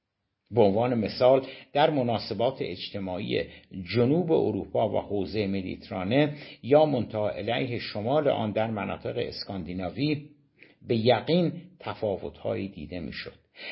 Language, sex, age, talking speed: Persian, male, 60-79, 105 wpm